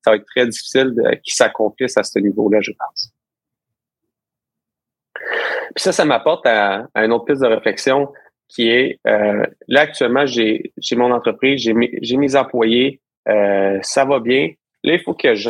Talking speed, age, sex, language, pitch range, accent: 180 wpm, 30-49, male, French, 115-160 Hz, Canadian